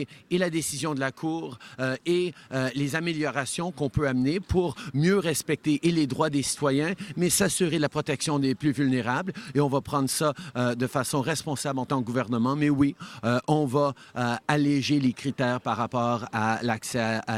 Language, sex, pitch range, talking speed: French, male, 125-155 Hz, 195 wpm